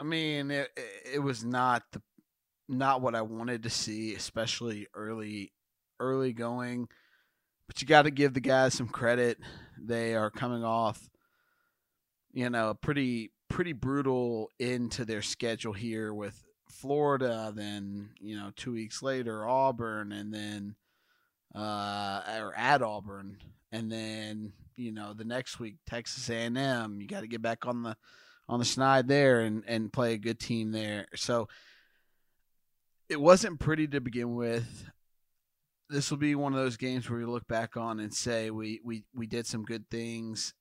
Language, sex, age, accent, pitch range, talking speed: English, male, 30-49, American, 110-125 Hz, 165 wpm